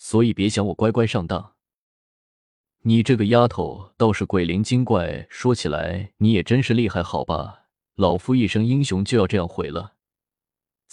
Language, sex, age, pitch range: Chinese, male, 20-39, 90-115 Hz